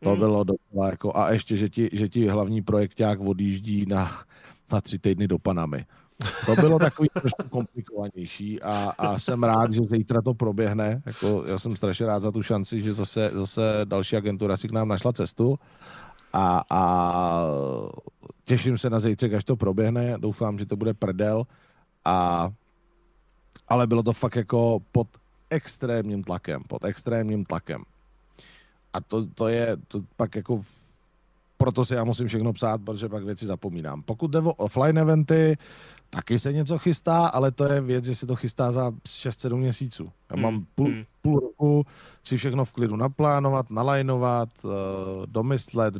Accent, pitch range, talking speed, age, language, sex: native, 105-130 Hz, 160 wpm, 40-59, Czech, male